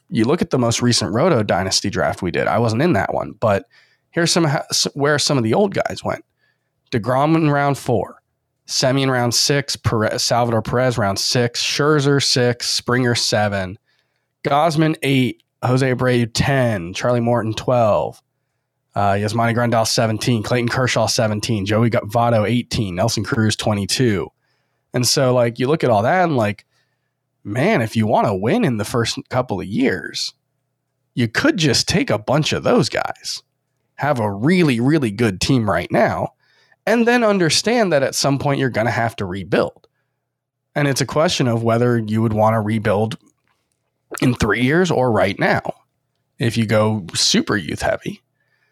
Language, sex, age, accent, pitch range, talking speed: English, male, 20-39, American, 115-140 Hz, 170 wpm